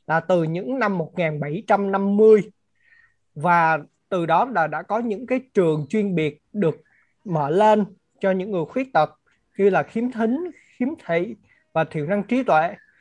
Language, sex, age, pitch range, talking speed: Vietnamese, male, 20-39, 165-225 Hz, 160 wpm